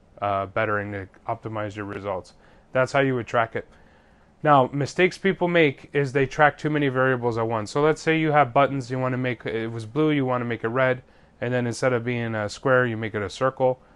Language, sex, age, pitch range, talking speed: English, male, 30-49, 115-150 Hz, 235 wpm